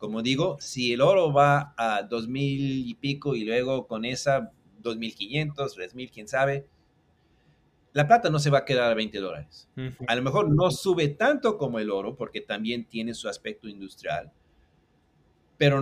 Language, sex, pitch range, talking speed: Spanish, male, 115-145 Hz, 165 wpm